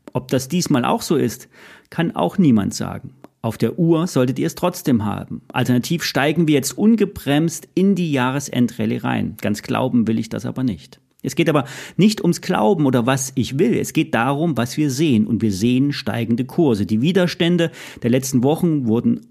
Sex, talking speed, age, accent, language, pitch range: male, 190 wpm, 40-59, German, German, 115-160 Hz